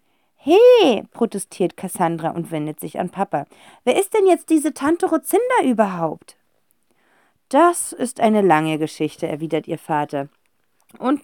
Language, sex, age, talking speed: German, female, 40-59, 135 wpm